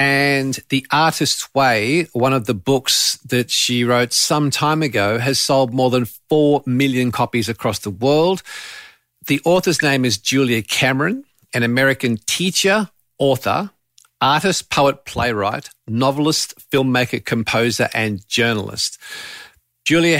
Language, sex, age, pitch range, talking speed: English, male, 50-69, 120-155 Hz, 130 wpm